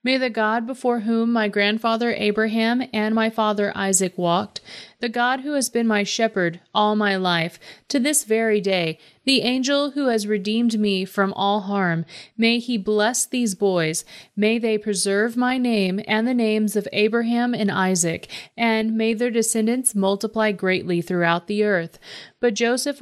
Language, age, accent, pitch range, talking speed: English, 30-49, American, 185-230 Hz, 165 wpm